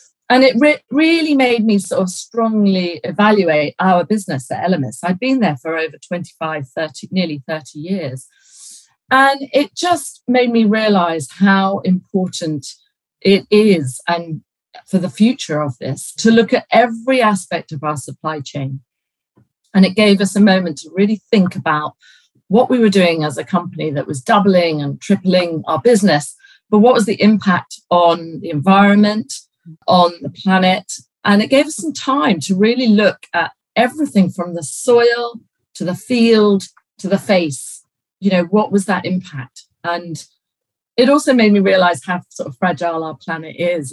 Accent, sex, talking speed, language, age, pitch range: British, female, 165 wpm, English, 40-59, 165-215 Hz